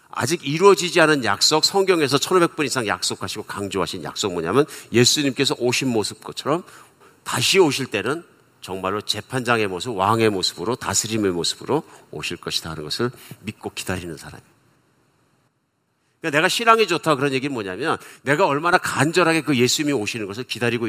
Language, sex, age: Korean, male, 50-69